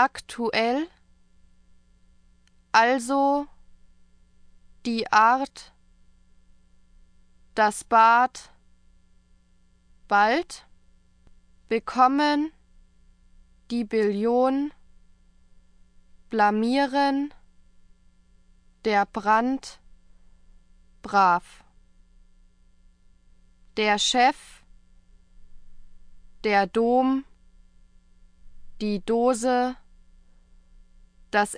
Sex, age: female, 20-39